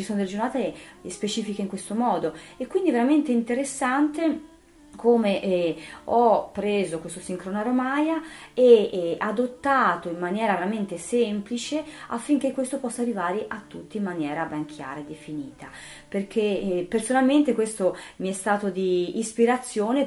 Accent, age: native, 30-49